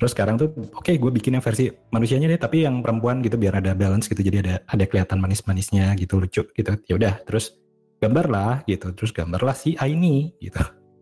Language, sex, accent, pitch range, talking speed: Indonesian, male, native, 100-135 Hz, 195 wpm